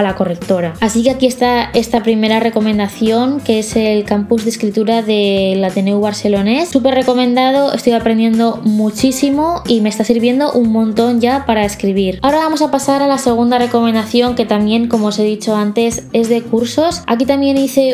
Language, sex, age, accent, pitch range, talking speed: Spanish, female, 20-39, Spanish, 215-255 Hz, 185 wpm